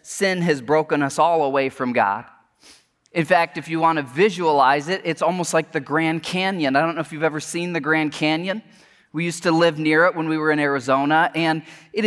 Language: English